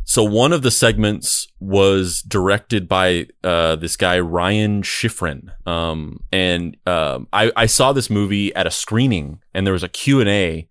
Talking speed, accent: 165 wpm, American